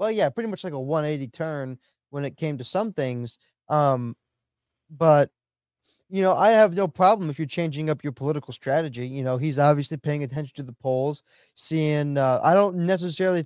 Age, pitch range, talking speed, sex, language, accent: 20-39, 130-165 Hz, 190 wpm, male, English, American